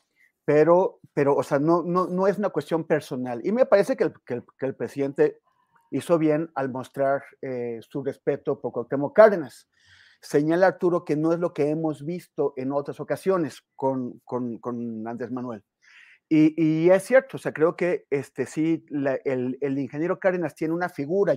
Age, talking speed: 40-59, 185 wpm